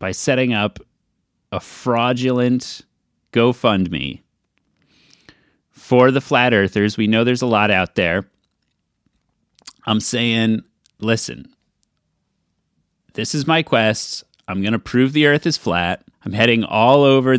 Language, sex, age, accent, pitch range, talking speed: English, male, 30-49, American, 105-135 Hz, 125 wpm